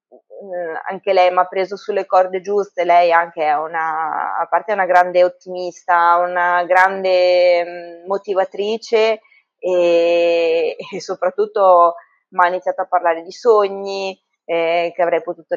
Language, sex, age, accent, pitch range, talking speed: Italian, female, 20-39, native, 170-195 Hz, 130 wpm